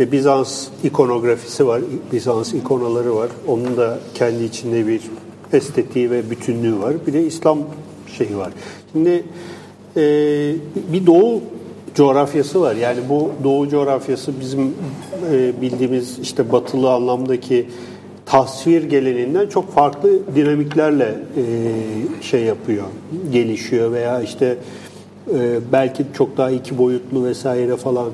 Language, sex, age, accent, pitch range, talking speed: English, male, 40-59, Turkish, 125-150 Hz, 110 wpm